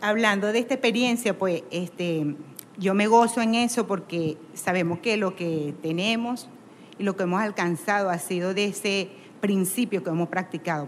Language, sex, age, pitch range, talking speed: Spanish, female, 40-59, 190-235 Hz, 165 wpm